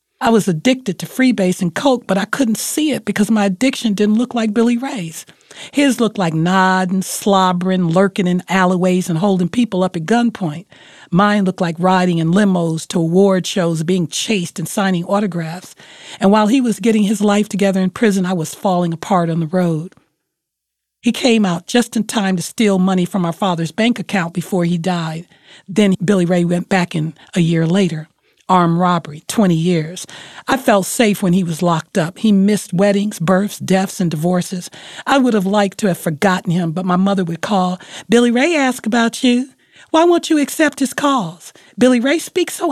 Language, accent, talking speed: English, American, 195 wpm